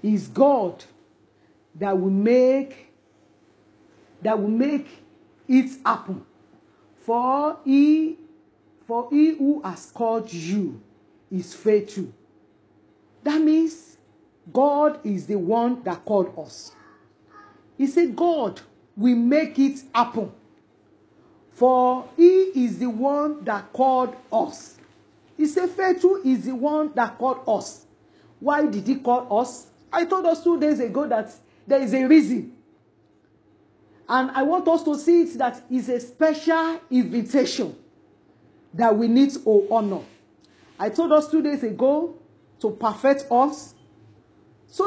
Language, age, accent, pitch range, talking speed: English, 50-69, Nigerian, 220-310 Hz, 130 wpm